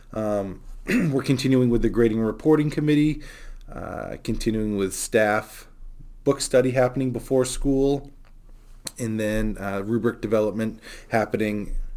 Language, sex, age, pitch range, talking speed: English, male, 20-39, 100-110 Hz, 120 wpm